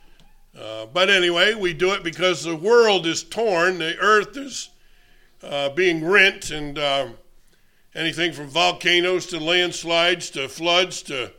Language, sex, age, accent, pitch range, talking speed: English, male, 50-69, American, 150-185 Hz, 140 wpm